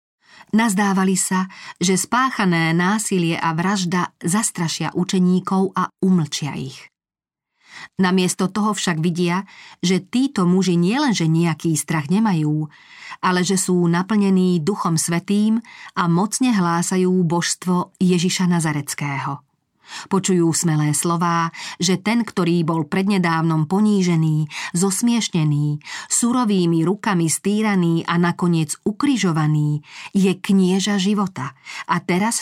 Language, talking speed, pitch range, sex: Slovak, 105 wpm, 170-195 Hz, female